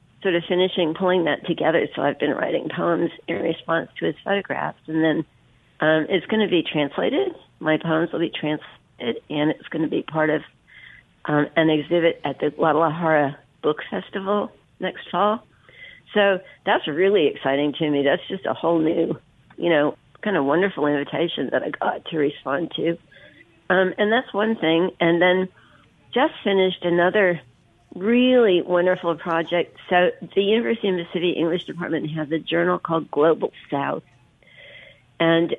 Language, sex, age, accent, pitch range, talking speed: English, female, 50-69, American, 155-180 Hz, 165 wpm